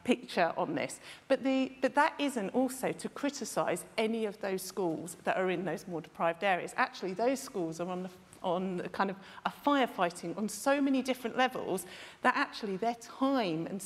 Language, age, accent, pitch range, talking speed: English, 40-59, British, 190-255 Hz, 190 wpm